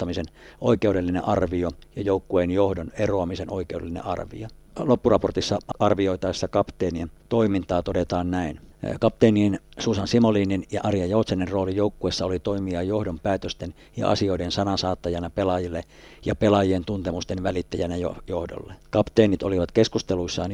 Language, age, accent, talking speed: Finnish, 50-69, native, 110 wpm